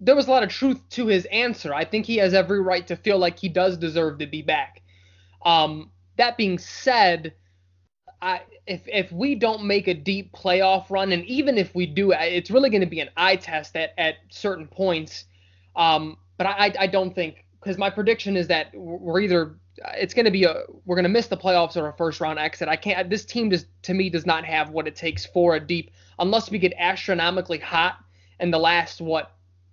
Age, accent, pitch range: 20-39, American, 160-195 Hz